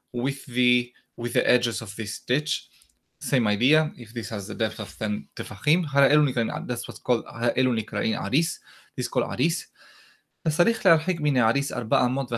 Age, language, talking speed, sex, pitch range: 20-39, English, 115 wpm, male, 110-150 Hz